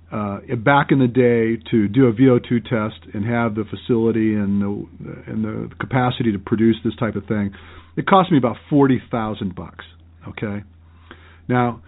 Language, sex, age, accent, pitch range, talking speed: English, male, 50-69, American, 110-160 Hz, 165 wpm